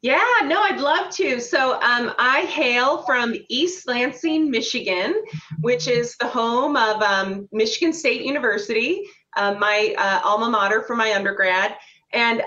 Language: English